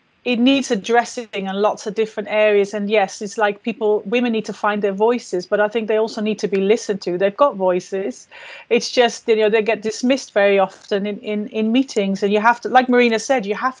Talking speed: 230 wpm